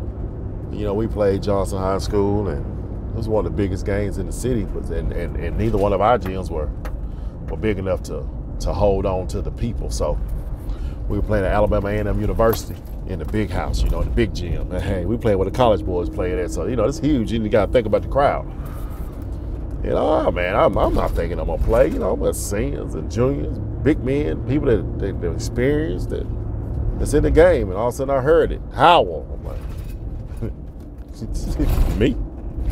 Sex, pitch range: male, 90-115 Hz